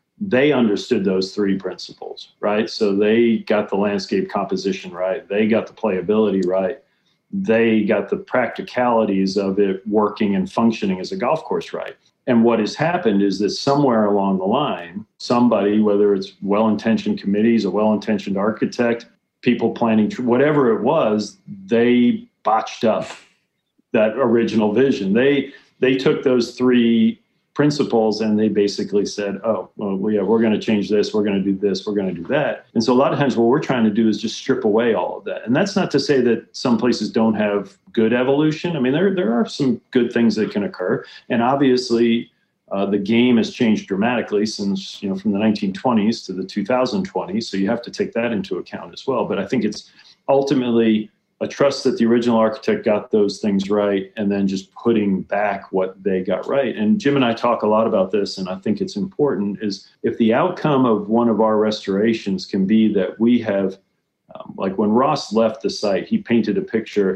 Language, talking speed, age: English, 195 wpm, 40-59